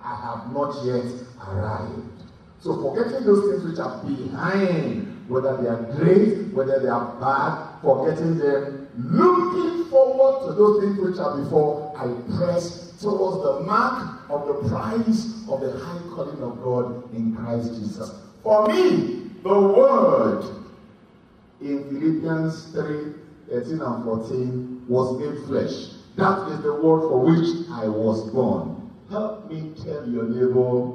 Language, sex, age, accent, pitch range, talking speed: English, male, 50-69, Nigerian, 125-205 Hz, 140 wpm